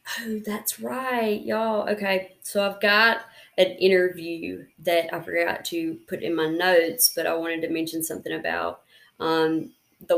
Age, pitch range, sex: 30-49, 165-190 Hz, female